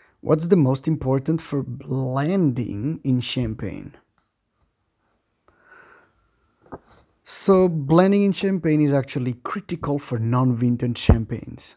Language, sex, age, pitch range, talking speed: English, male, 30-49, 125-160 Hz, 90 wpm